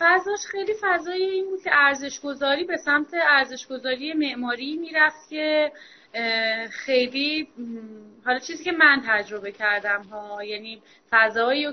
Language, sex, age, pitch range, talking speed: Persian, female, 20-39, 220-300 Hz, 120 wpm